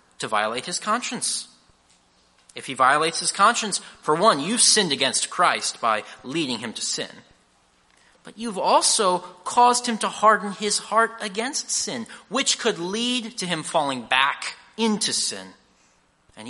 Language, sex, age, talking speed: English, male, 30-49, 150 wpm